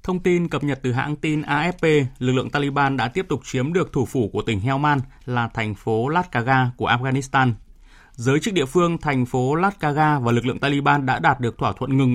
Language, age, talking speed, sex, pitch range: Vietnamese, 20-39, 215 wpm, male, 120-155 Hz